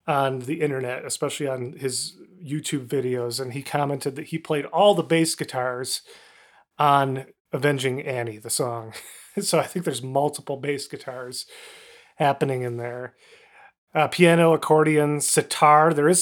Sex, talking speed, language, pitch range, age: male, 145 wpm, English, 135-160 Hz, 30-49